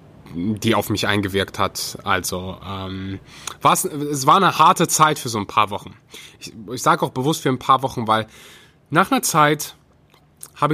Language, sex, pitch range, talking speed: German, male, 120-165 Hz, 175 wpm